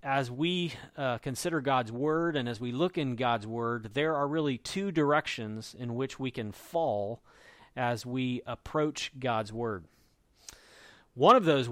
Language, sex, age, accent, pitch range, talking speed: English, male, 40-59, American, 115-150 Hz, 160 wpm